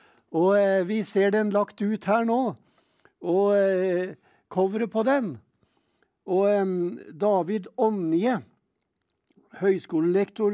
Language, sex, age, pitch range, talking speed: English, male, 60-79, 190-220 Hz, 100 wpm